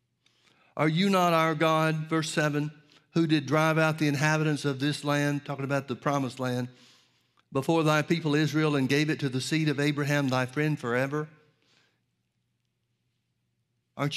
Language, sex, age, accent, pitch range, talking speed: English, male, 60-79, American, 130-155 Hz, 155 wpm